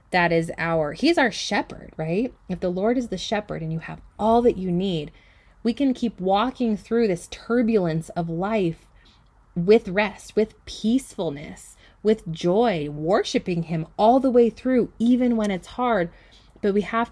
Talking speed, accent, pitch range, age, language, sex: 170 wpm, American, 160-205 Hz, 20-39, English, female